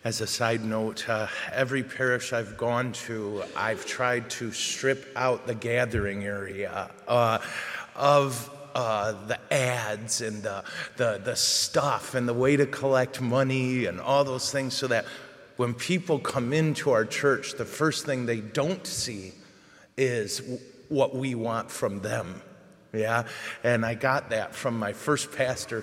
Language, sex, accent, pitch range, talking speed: English, male, American, 115-135 Hz, 155 wpm